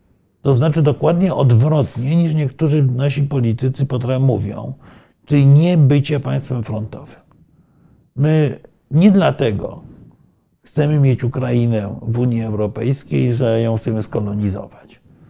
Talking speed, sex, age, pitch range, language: 110 wpm, male, 50-69, 120-150 Hz, Polish